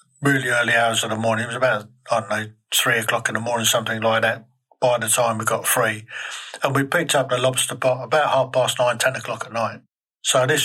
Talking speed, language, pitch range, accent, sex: 240 wpm, English, 115-135 Hz, British, male